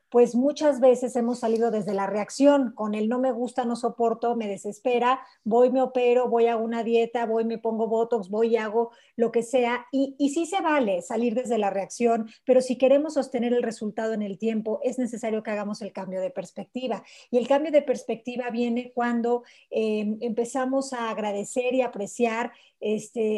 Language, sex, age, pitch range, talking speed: Spanish, female, 40-59, 215-255 Hz, 190 wpm